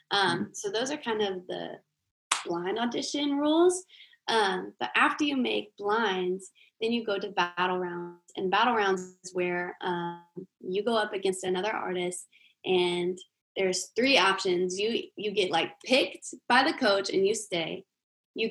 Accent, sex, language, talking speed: American, female, English, 160 wpm